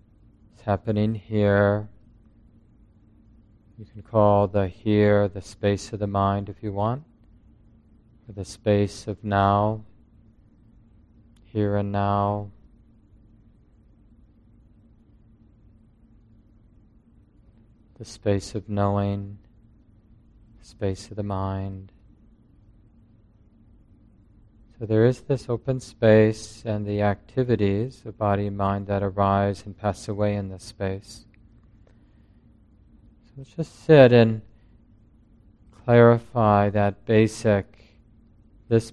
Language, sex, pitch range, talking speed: English, male, 100-110 Hz, 95 wpm